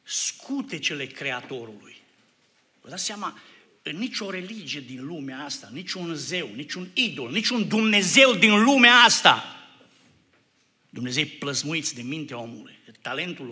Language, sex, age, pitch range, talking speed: Romanian, male, 60-79, 120-145 Hz, 140 wpm